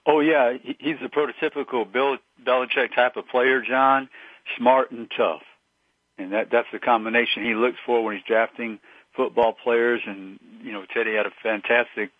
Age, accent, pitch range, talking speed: 50-69, American, 105-125 Hz, 165 wpm